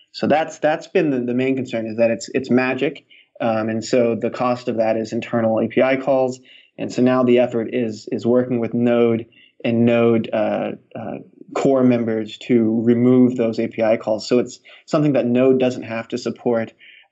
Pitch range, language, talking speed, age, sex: 115-130 Hz, English, 185 wpm, 20-39, male